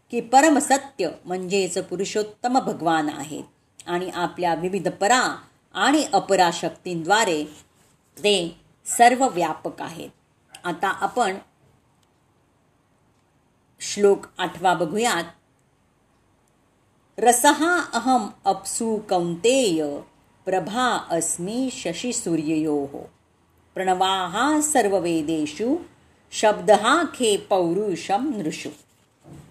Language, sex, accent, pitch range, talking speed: Marathi, female, native, 170-240 Hz, 65 wpm